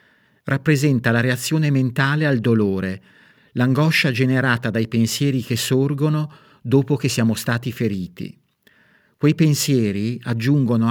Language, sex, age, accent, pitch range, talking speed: Italian, male, 50-69, native, 110-140 Hz, 110 wpm